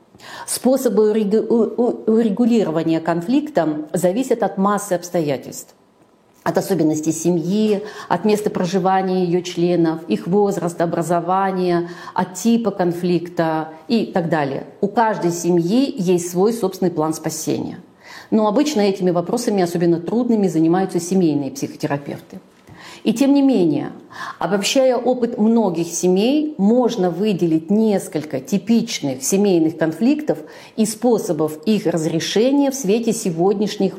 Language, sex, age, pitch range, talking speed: Russian, female, 40-59, 170-225 Hz, 110 wpm